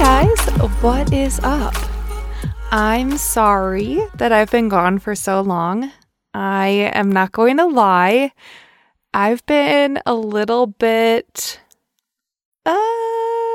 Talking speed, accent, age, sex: 115 wpm, American, 20-39, female